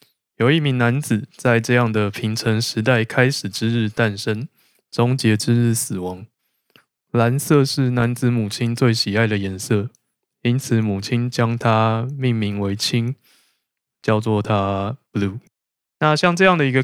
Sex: male